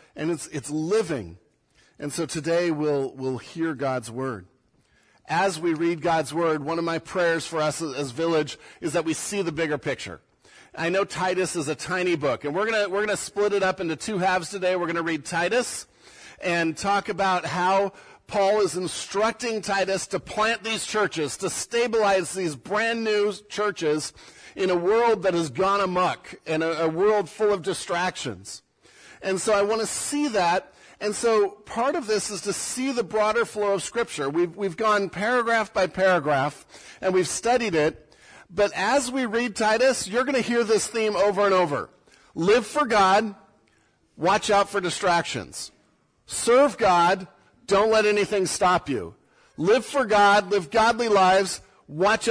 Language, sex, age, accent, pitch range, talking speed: English, male, 50-69, American, 165-210 Hz, 180 wpm